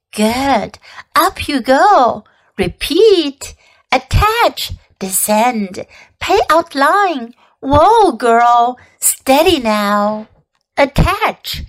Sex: female